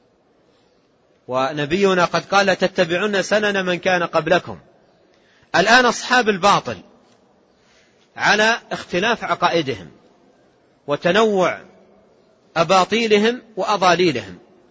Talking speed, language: 70 wpm, Arabic